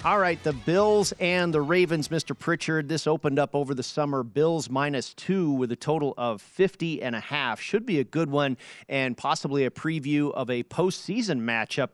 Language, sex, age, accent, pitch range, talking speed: English, male, 40-59, American, 135-165 Hz, 195 wpm